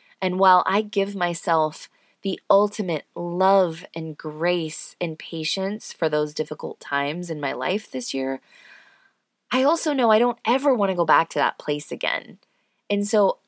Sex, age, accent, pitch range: female, 20-39, American, 165-245 Hz